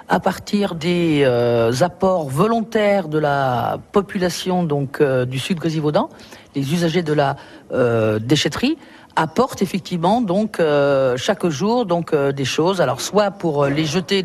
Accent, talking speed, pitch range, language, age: French, 145 wpm, 155-225 Hz, French, 50-69